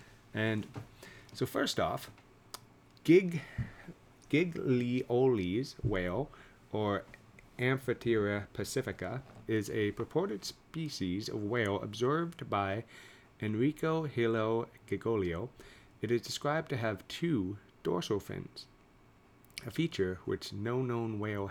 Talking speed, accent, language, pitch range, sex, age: 100 wpm, American, English, 100-130 Hz, male, 30-49